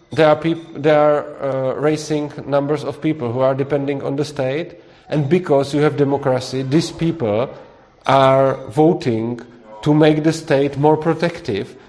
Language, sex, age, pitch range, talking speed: Czech, male, 40-59, 120-145 Hz, 155 wpm